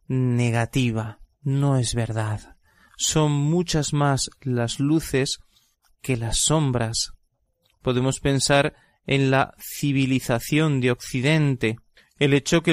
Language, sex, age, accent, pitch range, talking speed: Spanish, male, 30-49, Spanish, 120-145 Hz, 105 wpm